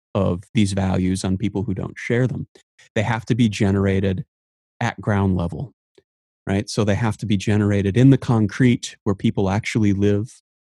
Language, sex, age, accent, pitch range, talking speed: English, male, 30-49, American, 95-115 Hz, 175 wpm